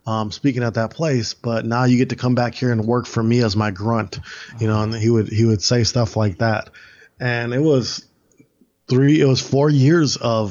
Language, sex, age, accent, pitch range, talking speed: English, male, 20-39, American, 110-130 Hz, 230 wpm